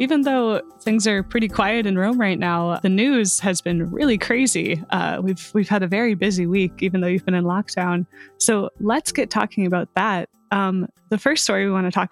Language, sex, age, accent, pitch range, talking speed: English, female, 20-39, American, 185-230 Hz, 220 wpm